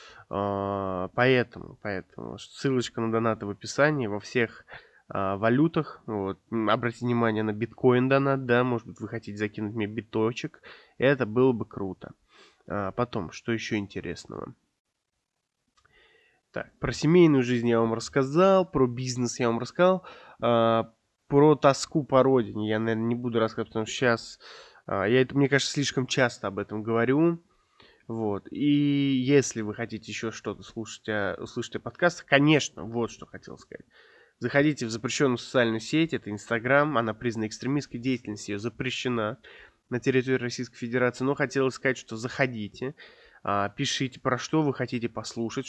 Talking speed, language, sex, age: 140 wpm, Russian, male, 20-39